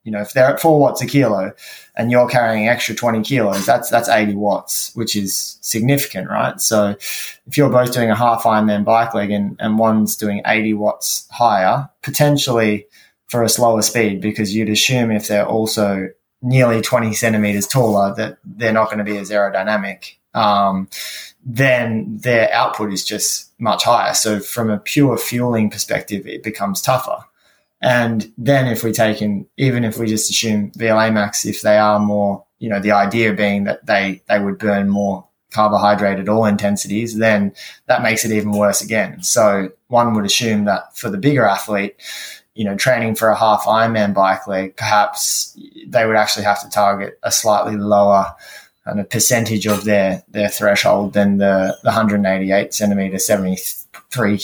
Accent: Australian